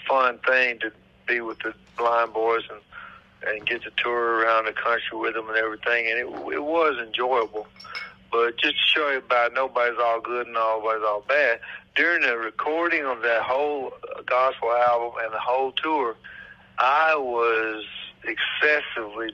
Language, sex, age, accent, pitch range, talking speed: English, male, 60-79, American, 110-125 Hz, 170 wpm